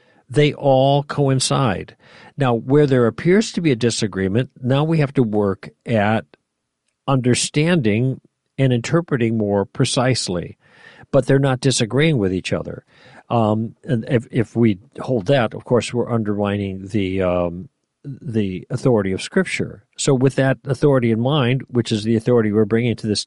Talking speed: 150 wpm